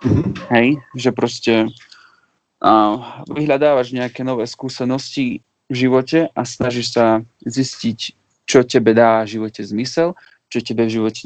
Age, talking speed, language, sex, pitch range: 30-49, 130 wpm, Slovak, male, 110-125 Hz